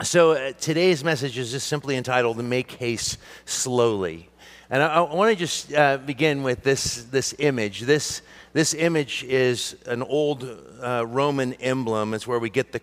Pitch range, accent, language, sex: 110-140 Hz, American, English, male